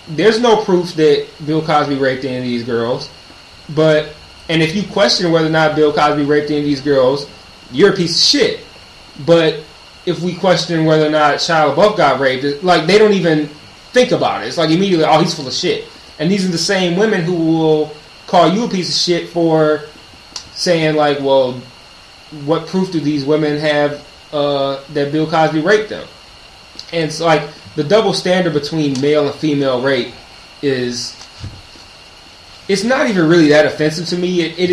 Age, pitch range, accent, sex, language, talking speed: 20-39, 135-165 Hz, American, male, English, 190 wpm